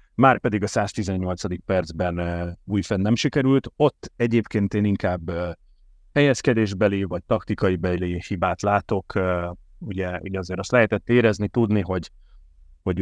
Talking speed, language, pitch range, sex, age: 125 wpm, Hungarian, 95-120 Hz, male, 30-49